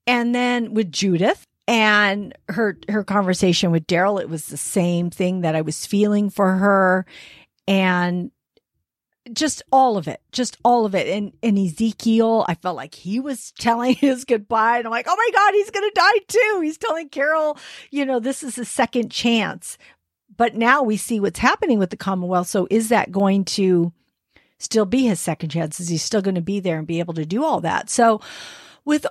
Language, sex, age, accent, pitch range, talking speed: English, female, 50-69, American, 185-240 Hz, 200 wpm